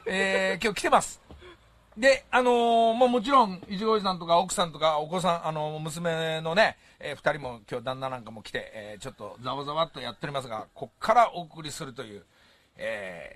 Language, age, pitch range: Japanese, 40-59, 170-255 Hz